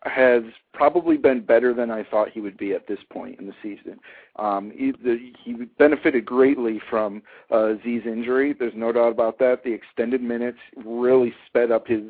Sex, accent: male, American